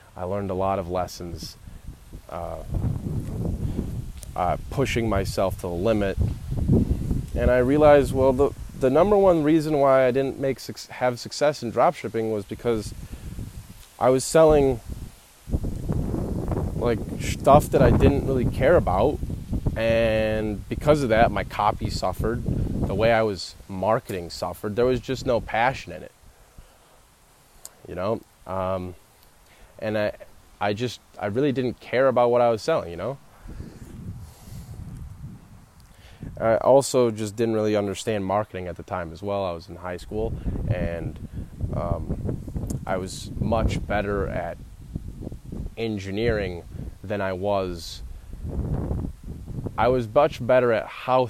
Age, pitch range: 20-39, 95-125 Hz